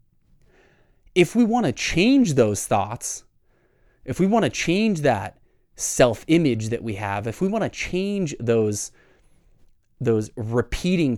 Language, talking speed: English, 140 wpm